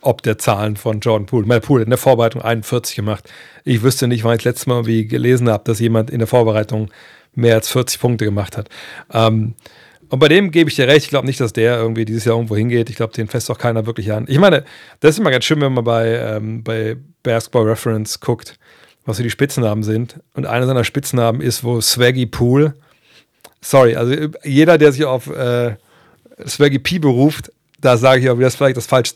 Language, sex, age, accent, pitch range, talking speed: German, male, 40-59, German, 115-140 Hz, 220 wpm